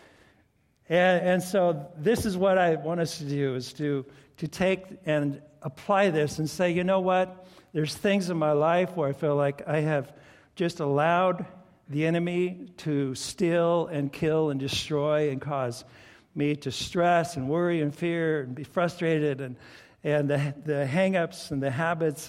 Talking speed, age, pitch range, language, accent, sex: 170 wpm, 60-79, 150-190 Hz, English, American, male